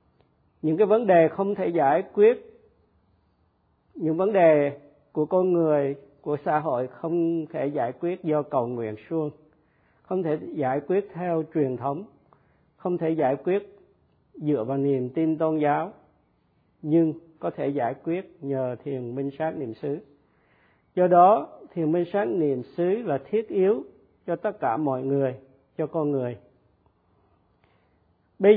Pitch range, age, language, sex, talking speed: 135-175 Hz, 50-69, Vietnamese, male, 150 wpm